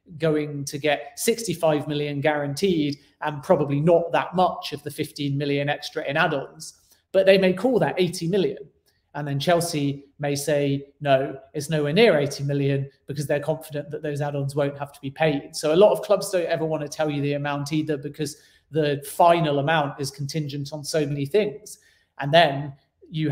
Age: 30-49